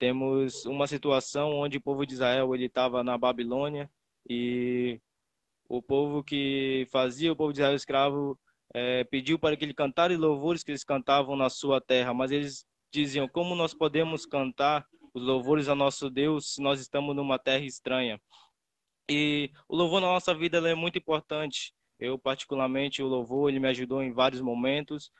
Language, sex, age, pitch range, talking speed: Portuguese, male, 20-39, 125-145 Hz, 170 wpm